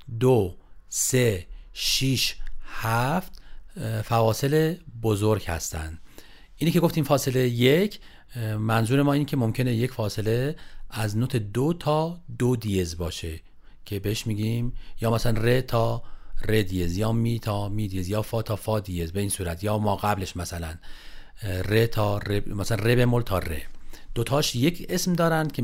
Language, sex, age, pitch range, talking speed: Persian, male, 40-59, 105-145 Hz, 150 wpm